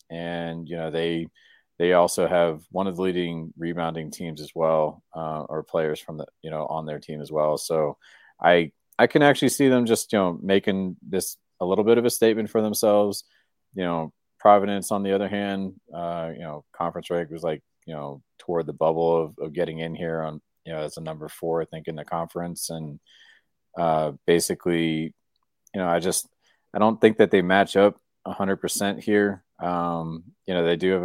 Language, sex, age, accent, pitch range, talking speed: English, male, 30-49, American, 80-90 Hz, 205 wpm